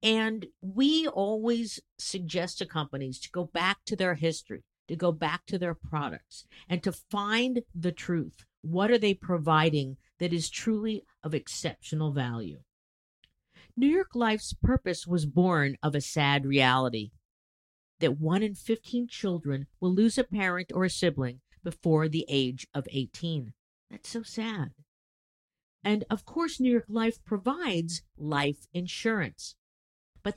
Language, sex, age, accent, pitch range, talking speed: English, female, 50-69, American, 145-210 Hz, 145 wpm